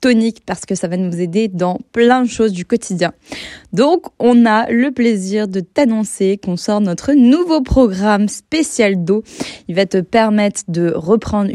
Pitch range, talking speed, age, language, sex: 185-235 Hz, 170 wpm, 20-39, French, female